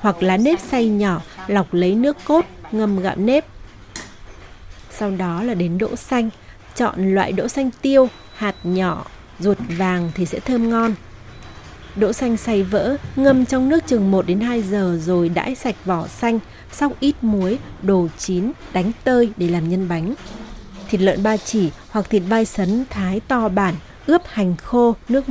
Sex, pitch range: female, 180-235 Hz